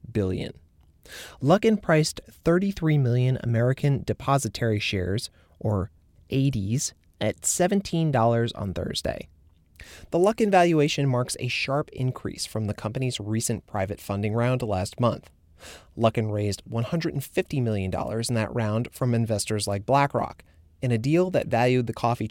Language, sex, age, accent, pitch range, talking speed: English, male, 30-49, American, 105-145 Hz, 130 wpm